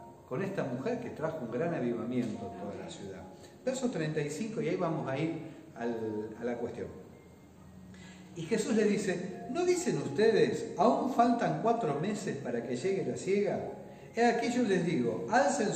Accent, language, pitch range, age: Argentinian, Spanish, 165-235 Hz, 40-59